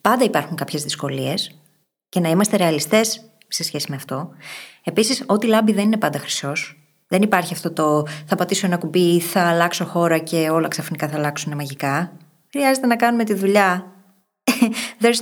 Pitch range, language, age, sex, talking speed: 160-225 Hz, Greek, 20-39, female, 165 wpm